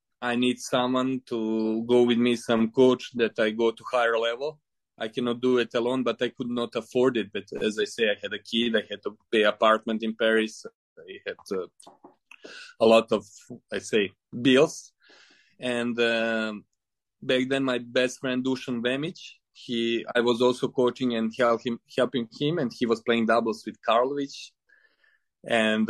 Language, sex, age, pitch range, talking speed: English, male, 20-39, 110-125 Hz, 180 wpm